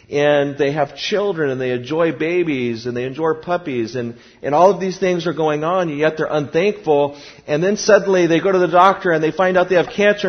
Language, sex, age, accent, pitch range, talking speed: English, male, 40-59, American, 145-185 Hz, 225 wpm